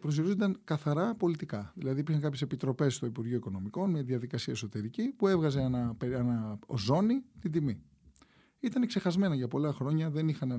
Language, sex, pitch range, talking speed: Greek, male, 120-185 Hz, 155 wpm